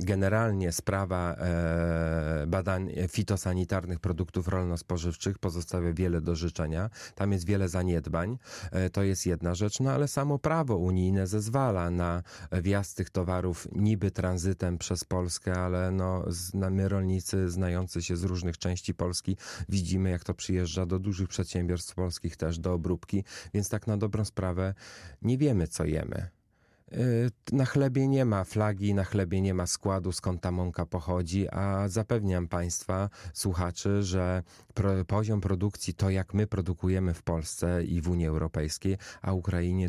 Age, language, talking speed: 30-49, Polish, 145 wpm